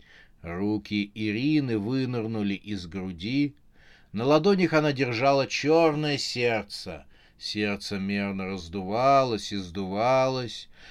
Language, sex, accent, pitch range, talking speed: Russian, male, native, 105-135 Hz, 90 wpm